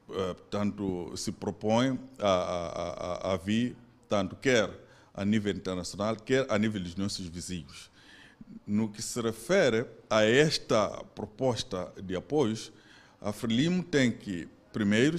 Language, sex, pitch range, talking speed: Portuguese, male, 105-140 Hz, 130 wpm